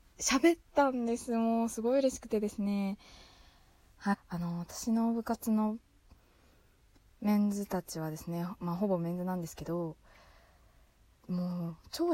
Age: 20-39